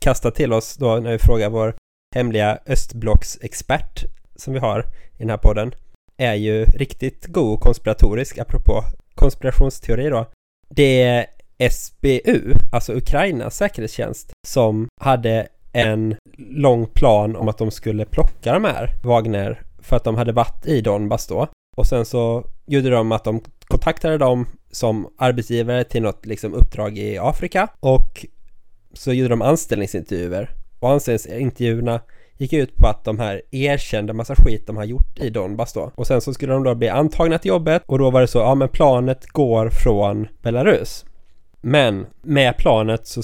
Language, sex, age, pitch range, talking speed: Swedish, male, 20-39, 105-130 Hz, 165 wpm